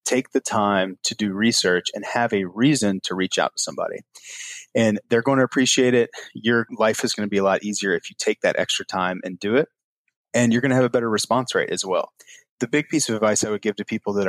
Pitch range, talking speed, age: 100-125 Hz, 255 wpm, 30-49